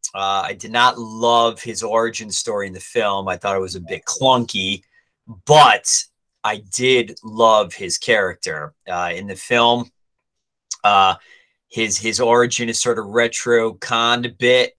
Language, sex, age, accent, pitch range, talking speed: English, male, 30-49, American, 100-125 Hz, 155 wpm